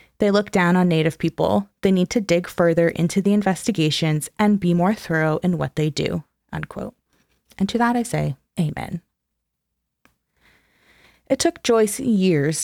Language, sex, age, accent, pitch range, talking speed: English, female, 20-39, American, 165-205 Hz, 155 wpm